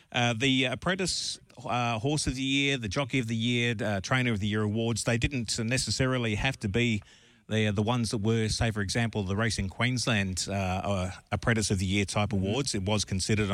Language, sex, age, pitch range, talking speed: English, male, 40-59, 100-125 Hz, 210 wpm